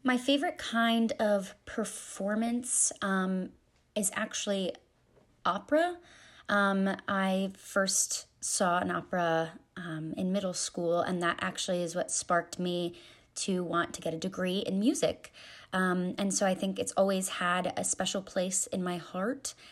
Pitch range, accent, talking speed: 170-195 Hz, American, 145 wpm